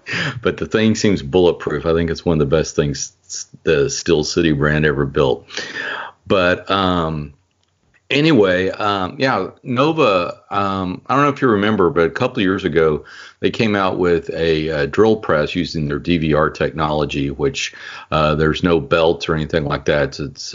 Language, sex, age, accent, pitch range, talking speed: English, male, 50-69, American, 75-90 Hz, 175 wpm